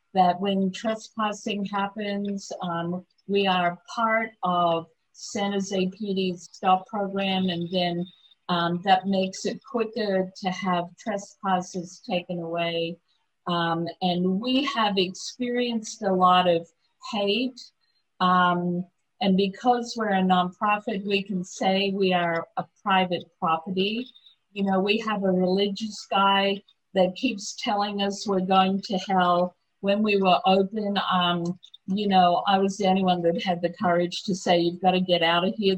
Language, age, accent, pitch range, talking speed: English, 50-69, American, 175-200 Hz, 150 wpm